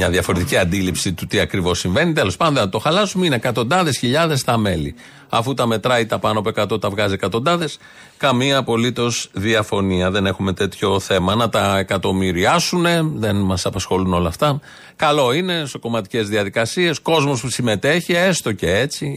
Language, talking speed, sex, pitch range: Greek, 165 wpm, male, 105-130 Hz